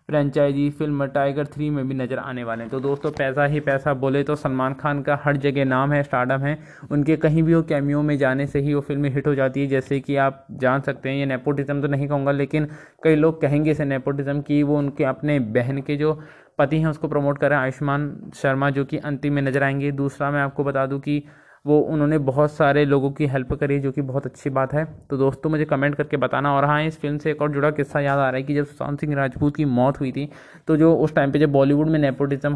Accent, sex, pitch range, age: native, male, 140-150 Hz, 20-39